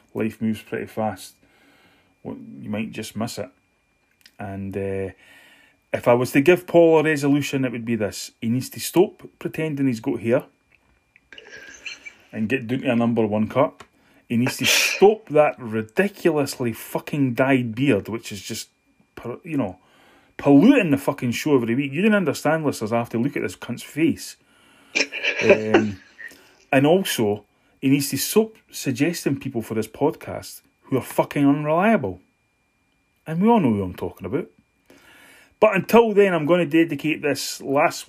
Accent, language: British, English